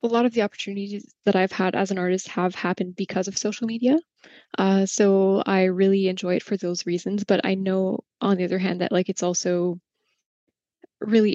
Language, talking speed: English, 200 wpm